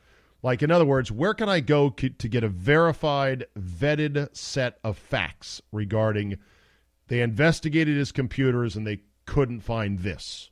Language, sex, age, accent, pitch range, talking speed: English, male, 40-59, American, 90-145 Hz, 150 wpm